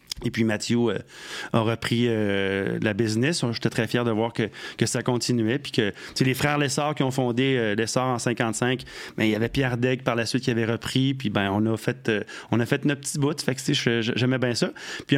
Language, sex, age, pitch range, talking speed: French, male, 30-49, 120-140 Hz, 235 wpm